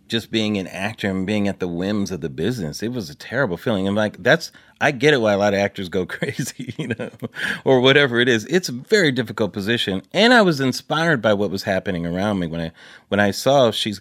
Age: 30-49